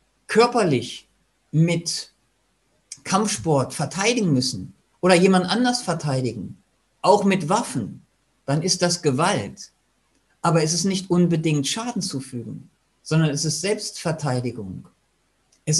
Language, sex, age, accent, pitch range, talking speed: German, male, 50-69, German, 140-185 Hz, 105 wpm